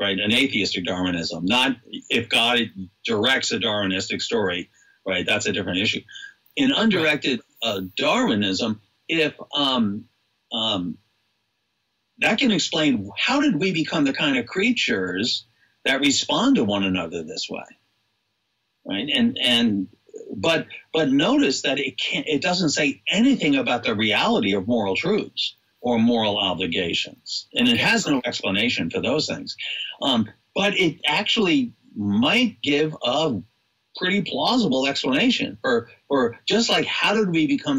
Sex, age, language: male, 60-79, English